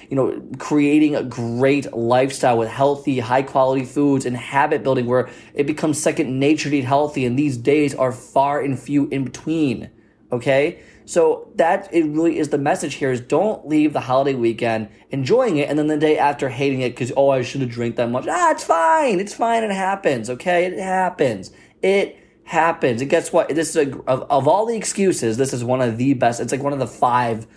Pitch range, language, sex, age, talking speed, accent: 110-145 Hz, English, male, 20-39, 210 wpm, American